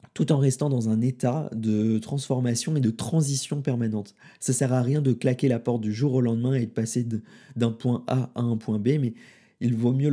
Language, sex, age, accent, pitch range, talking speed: French, male, 20-39, French, 115-140 Hz, 230 wpm